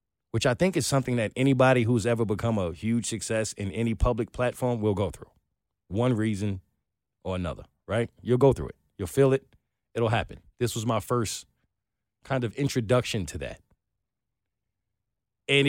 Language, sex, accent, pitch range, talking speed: English, male, American, 105-140 Hz, 170 wpm